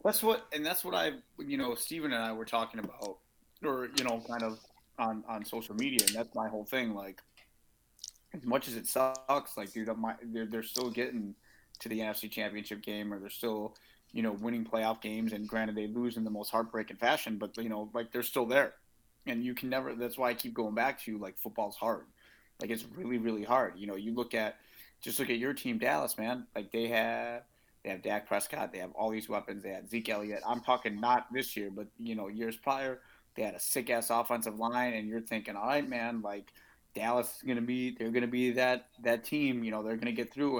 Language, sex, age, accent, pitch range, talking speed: English, male, 30-49, American, 110-120 Hz, 235 wpm